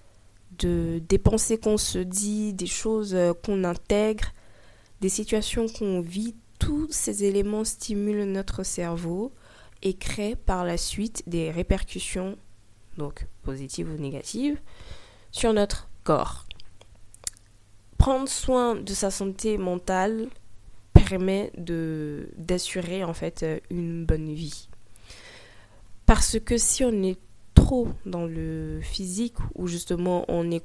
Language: French